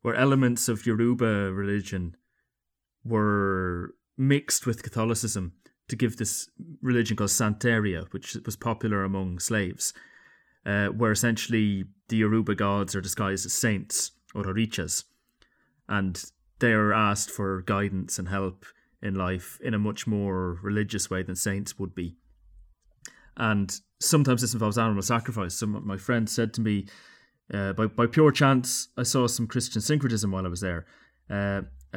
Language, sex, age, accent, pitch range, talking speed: English, male, 30-49, British, 95-120 Hz, 150 wpm